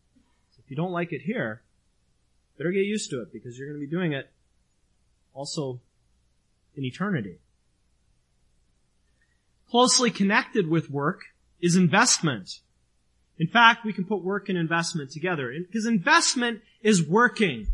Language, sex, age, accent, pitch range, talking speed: English, male, 30-49, American, 125-210 Hz, 135 wpm